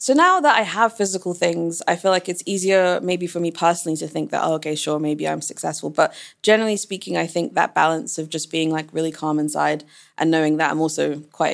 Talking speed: 230 wpm